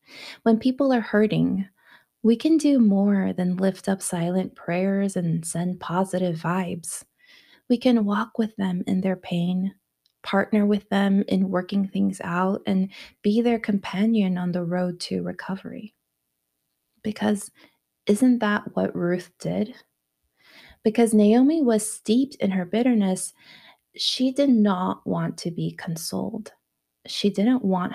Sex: female